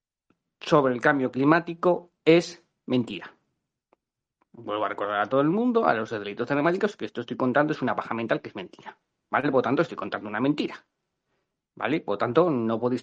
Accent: Spanish